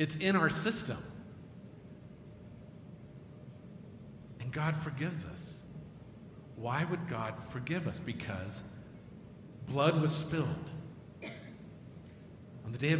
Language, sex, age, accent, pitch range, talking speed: English, male, 50-69, American, 135-165 Hz, 95 wpm